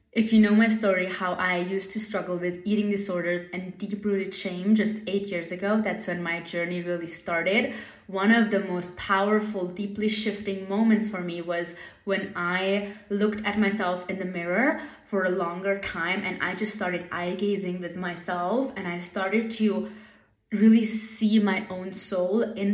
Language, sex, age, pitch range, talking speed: English, female, 20-39, 180-210 Hz, 175 wpm